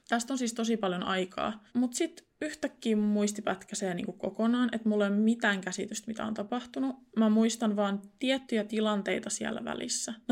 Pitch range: 195-230 Hz